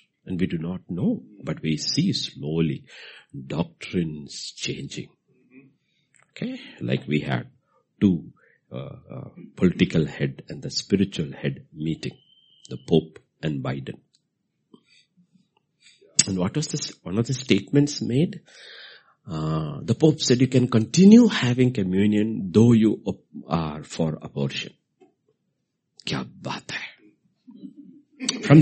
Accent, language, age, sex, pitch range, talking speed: Indian, English, 60-79, male, 85-140 Hz, 110 wpm